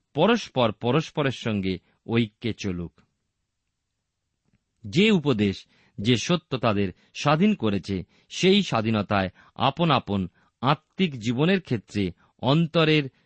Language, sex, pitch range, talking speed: Bengali, male, 100-150 Hz, 90 wpm